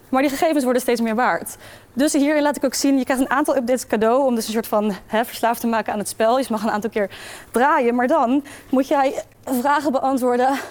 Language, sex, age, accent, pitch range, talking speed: Dutch, female, 20-39, Dutch, 245-300 Hz, 240 wpm